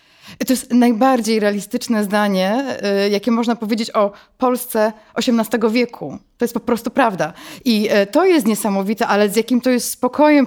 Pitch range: 210-265 Hz